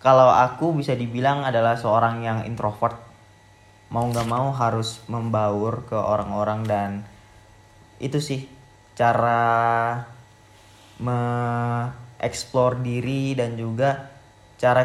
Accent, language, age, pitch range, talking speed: native, Indonesian, 20-39, 110-135 Hz, 95 wpm